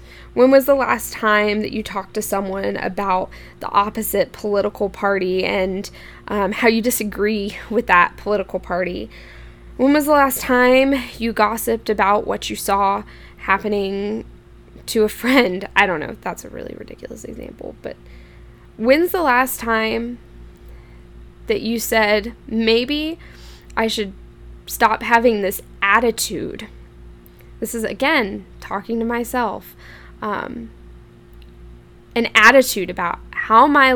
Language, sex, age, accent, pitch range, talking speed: English, female, 10-29, American, 180-235 Hz, 130 wpm